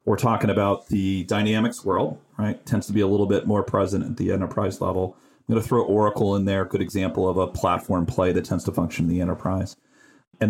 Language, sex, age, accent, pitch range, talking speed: English, male, 40-59, American, 90-115 Hz, 230 wpm